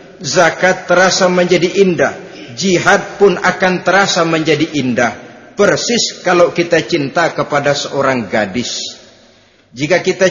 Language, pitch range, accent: Indonesian, 160-220 Hz, native